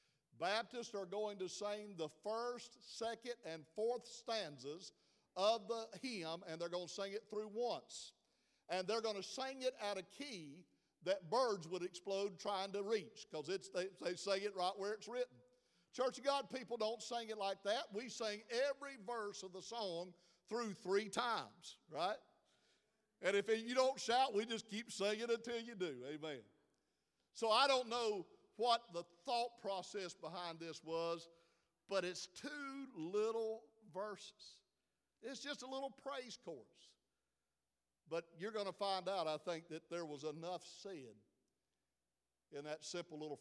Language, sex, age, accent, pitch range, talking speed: English, male, 50-69, American, 170-235 Hz, 165 wpm